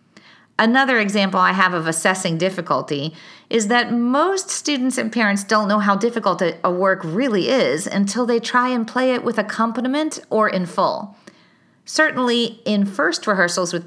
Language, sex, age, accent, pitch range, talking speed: English, female, 40-59, American, 180-235 Hz, 160 wpm